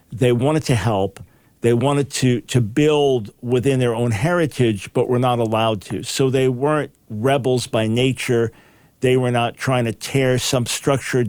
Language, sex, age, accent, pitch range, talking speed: English, male, 50-69, American, 115-140 Hz, 170 wpm